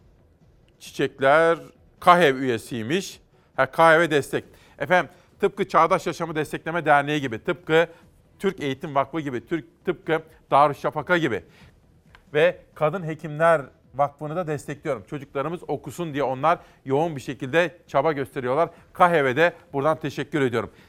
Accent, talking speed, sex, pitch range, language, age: native, 115 wpm, male, 140-175 Hz, Turkish, 40-59